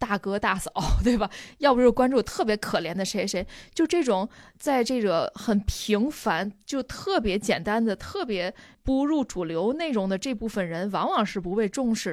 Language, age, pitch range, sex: Chinese, 20-39, 190-250 Hz, female